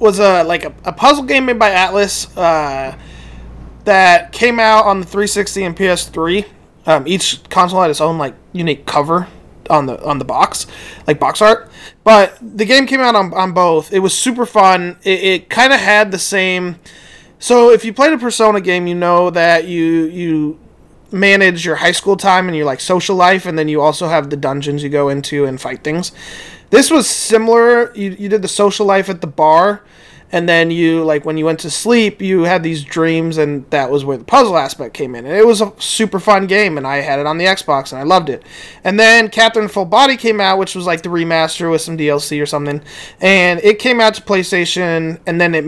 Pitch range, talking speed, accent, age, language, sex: 160-205 Hz, 220 wpm, American, 20-39, English, male